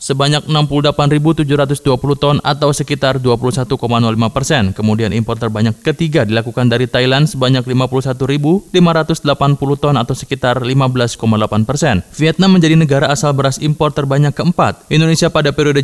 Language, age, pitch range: Indonesian, 20-39, 125-150 Hz